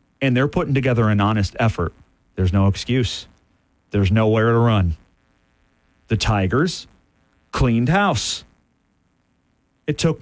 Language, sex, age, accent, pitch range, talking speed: English, male, 40-59, American, 100-145 Hz, 115 wpm